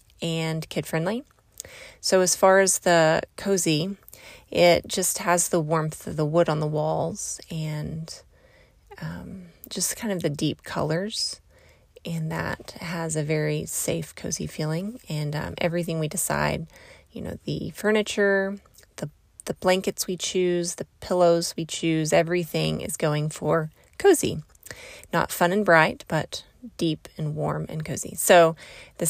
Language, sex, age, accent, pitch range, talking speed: English, female, 30-49, American, 155-185 Hz, 145 wpm